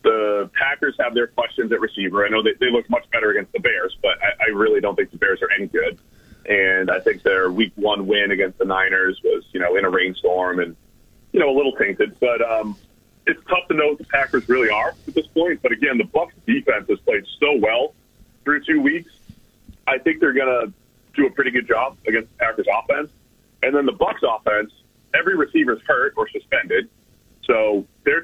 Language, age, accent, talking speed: English, 30-49, American, 215 wpm